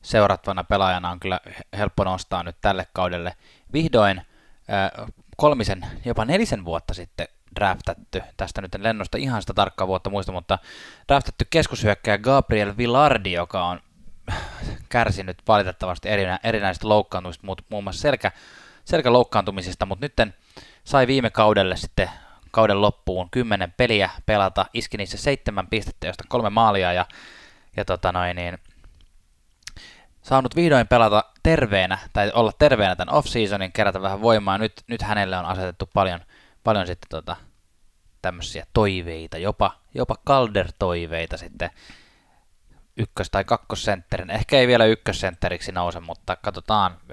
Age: 20-39